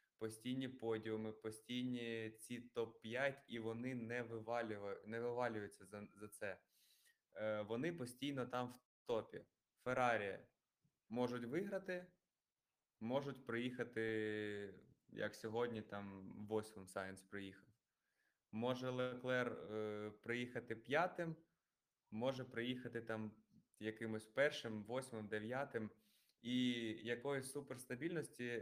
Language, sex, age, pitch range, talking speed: Ukrainian, male, 20-39, 110-125 Hz, 95 wpm